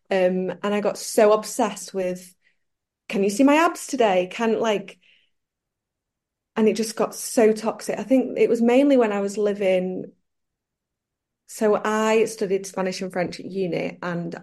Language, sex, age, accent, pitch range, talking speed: English, female, 20-39, British, 185-225 Hz, 160 wpm